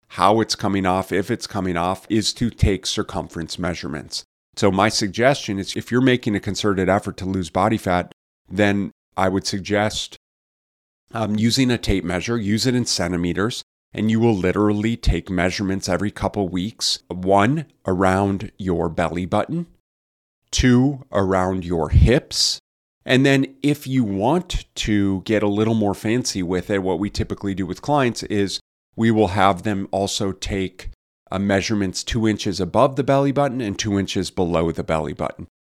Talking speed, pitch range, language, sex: 165 wpm, 95-110 Hz, English, male